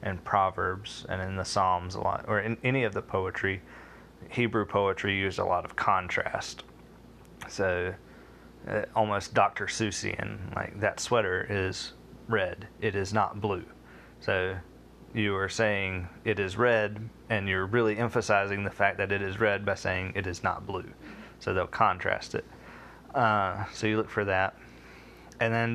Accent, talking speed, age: American, 165 wpm, 20-39